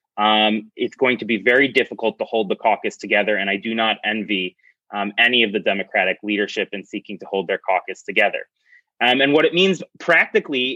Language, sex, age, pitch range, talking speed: English, male, 30-49, 110-145 Hz, 200 wpm